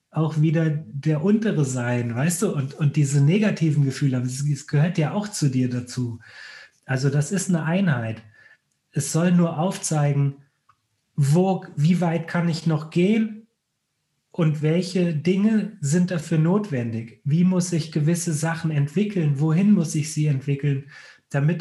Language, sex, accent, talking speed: German, male, German, 145 wpm